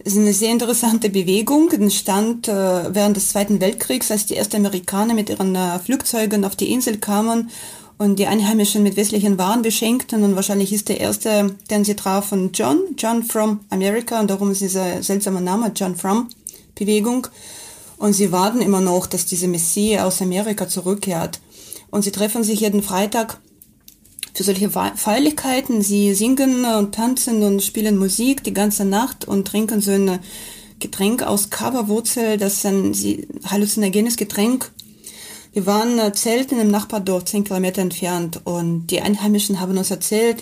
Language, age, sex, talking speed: German, 30-49, female, 155 wpm